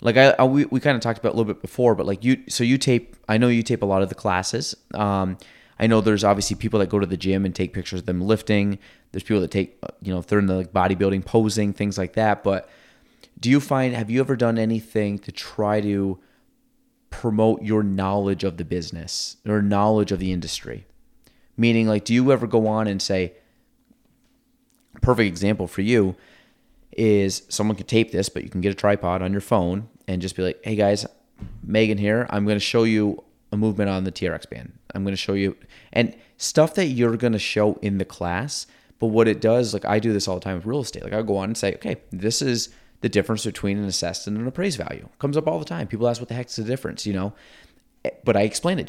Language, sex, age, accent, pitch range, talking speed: English, male, 30-49, American, 95-115 Hz, 245 wpm